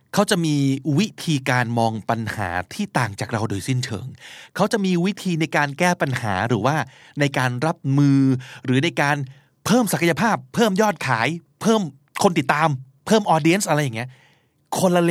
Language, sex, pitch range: Thai, male, 120-160 Hz